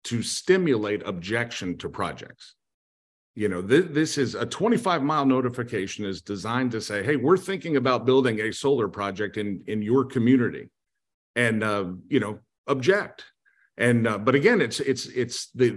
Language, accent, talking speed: English, American, 165 wpm